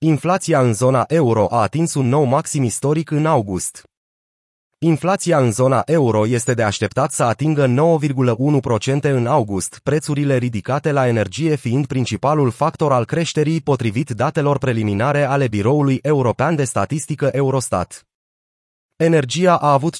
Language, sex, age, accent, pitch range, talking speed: Romanian, male, 30-49, native, 120-155 Hz, 135 wpm